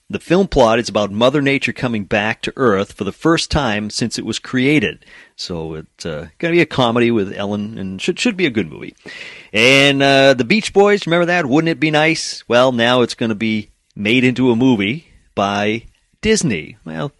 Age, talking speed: 40-59, 210 wpm